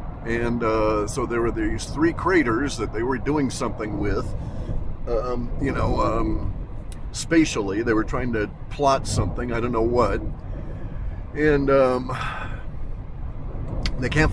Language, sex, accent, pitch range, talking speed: English, male, American, 110-140 Hz, 140 wpm